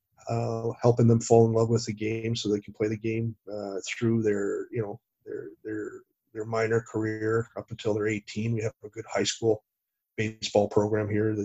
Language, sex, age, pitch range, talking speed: English, male, 30-49, 105-115 Hz, 200 wpm